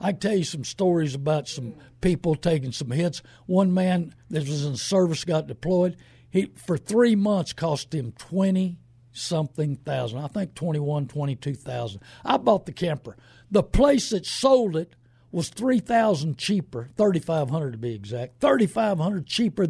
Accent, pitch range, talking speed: American, 140-200 Hz, 150 wpm